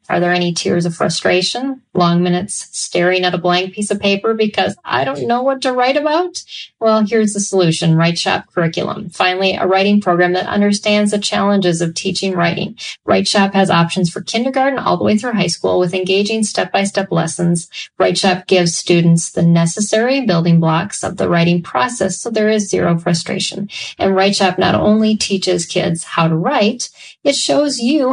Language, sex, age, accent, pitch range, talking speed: English, female, 30-49, American, 175-210 Hz, 175 wpm